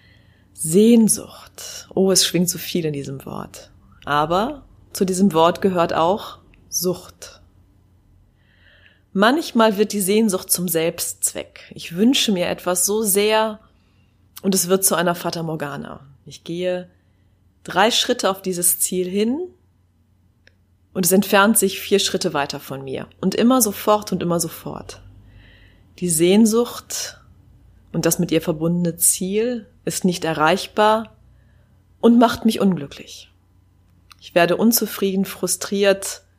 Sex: female